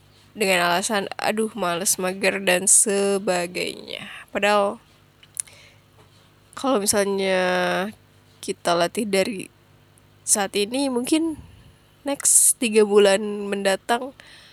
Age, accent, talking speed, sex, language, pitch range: 10-29, native, 85 wpm, female, Indonesian, 185-225 Hz